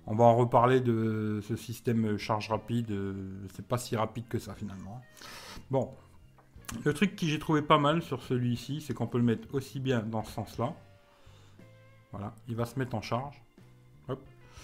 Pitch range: 110-140 Hz